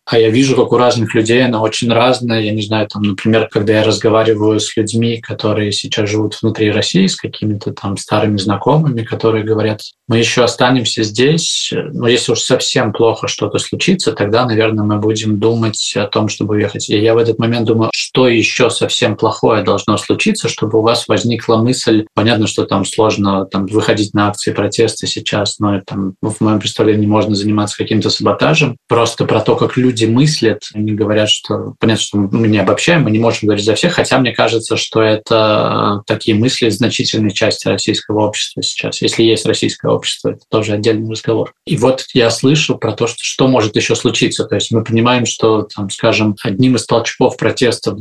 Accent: native